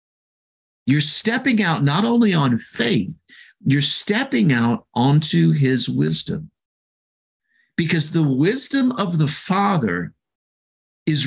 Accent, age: American, 50-69